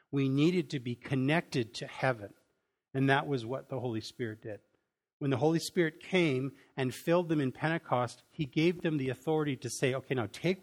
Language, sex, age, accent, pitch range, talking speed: English, male, 50-69, American, 130-170 Hz, 200 wpm